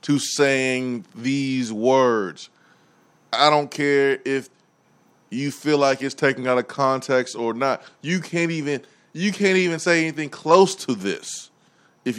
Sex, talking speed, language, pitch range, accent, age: male, 150 wpm, English, 130-170 Hz, American, 20-39